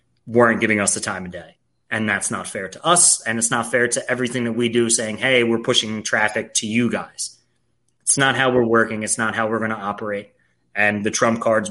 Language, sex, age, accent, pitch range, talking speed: English, male, 30-49, American, 100-120 Hz, 235 wpm